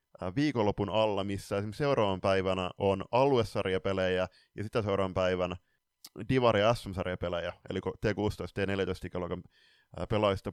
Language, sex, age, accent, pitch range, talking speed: Finnish, male, 20-39, native, 95-110 Hz, 125 wpm